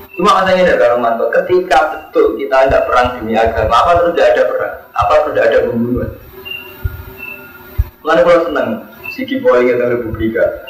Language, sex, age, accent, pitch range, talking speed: Indonesian, male, 30-49, native, 135-225 Hz, 165 wpm